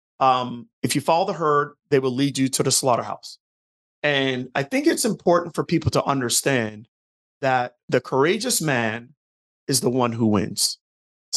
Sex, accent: male, American